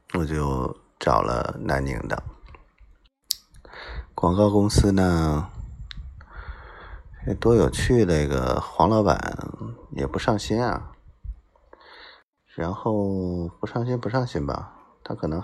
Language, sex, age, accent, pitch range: Chinese, male, 20-39, native, 75-105 Hz